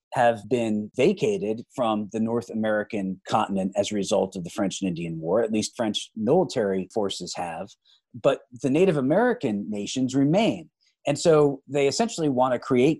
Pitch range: 100-140 Hz